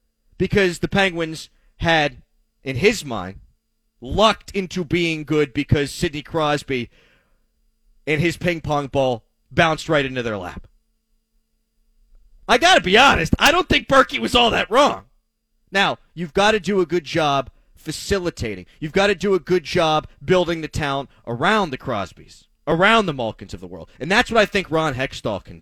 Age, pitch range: 30-49, 130-200 Hz